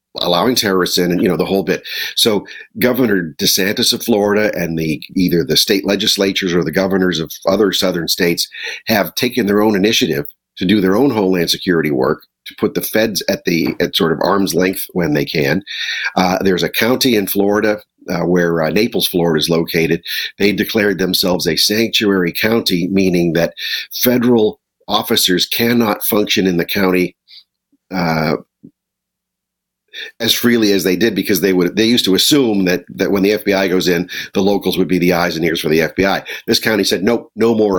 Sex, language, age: male, English, 50-69